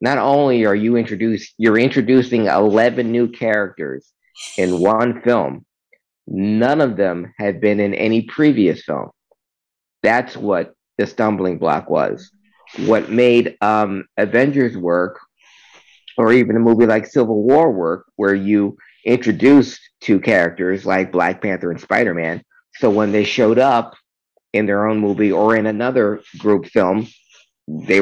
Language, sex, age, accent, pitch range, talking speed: English, male, 50-69, American, 100-120 Hz, 140 wpm